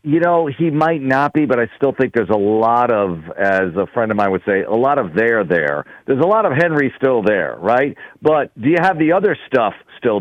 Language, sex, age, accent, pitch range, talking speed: English, male, 50-69, American, 115-160 Hz, 245 wpm